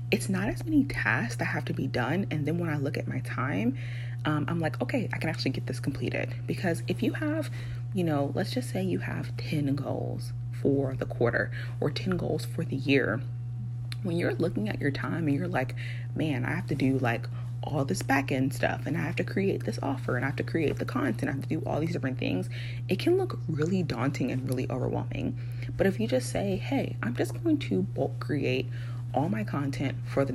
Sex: female